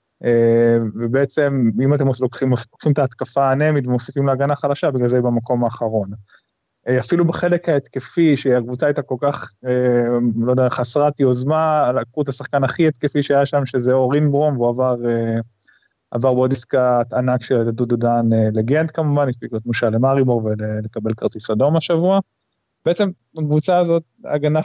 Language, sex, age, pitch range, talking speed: Hebrew, male, 20-39, 120-145 Hz, 155 wpm